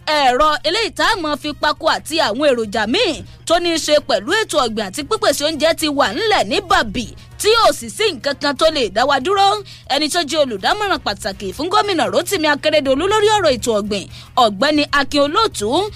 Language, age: English, 20-39